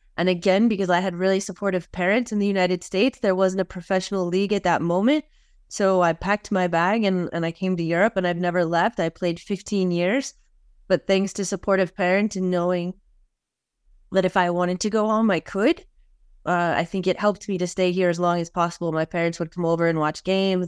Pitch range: 170-195 Hz